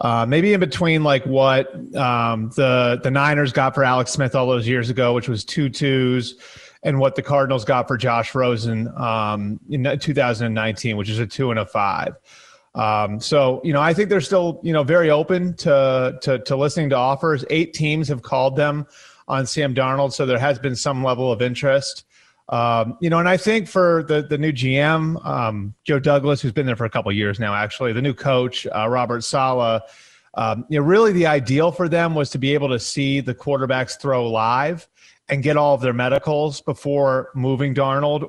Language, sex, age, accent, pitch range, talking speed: English, male, 30-49, American, 125-150 Hz, 205 wpm